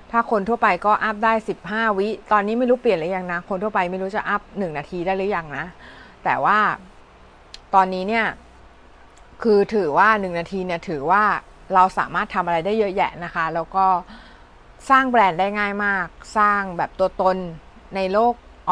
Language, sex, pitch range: Thai, female, 170-215 Hz